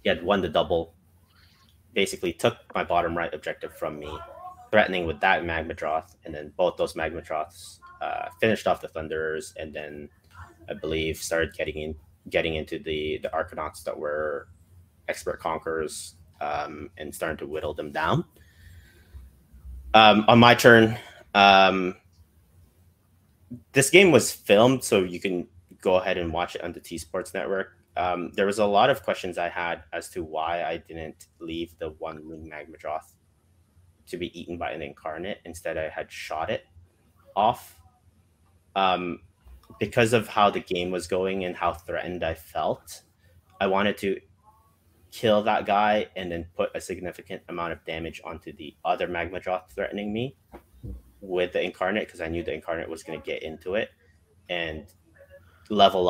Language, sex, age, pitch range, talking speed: English, male, 30-49, 85-100 Hz, 165 wpm